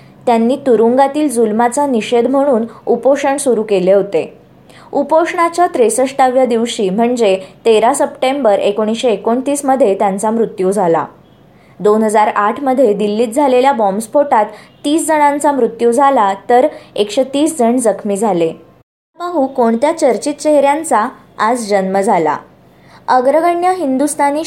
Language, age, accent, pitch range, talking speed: Marathi, 20-39, native, 215-275 Hz, 105 wpm